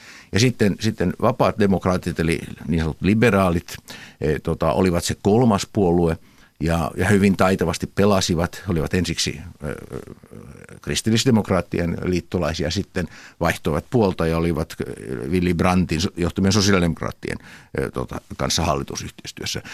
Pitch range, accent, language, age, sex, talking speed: 85-105 Hz, native, Finnish, 60-79, male, 115 wpm